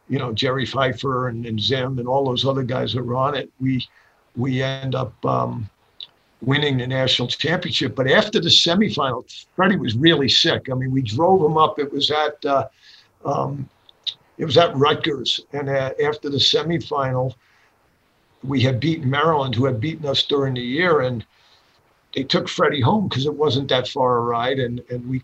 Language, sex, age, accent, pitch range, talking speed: English, male, 50-69, American, 130-145 Hz, 190 wpm